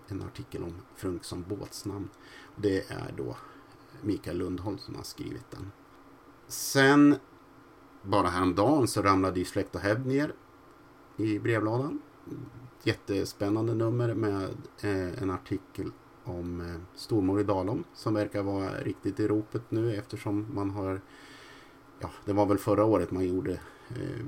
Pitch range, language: 90-105 Hz, Swedish